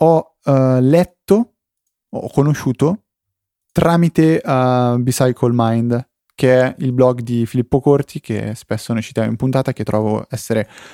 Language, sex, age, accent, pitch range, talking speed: Italian, male, 30-49, native, 120-165 Hz, 125 wpm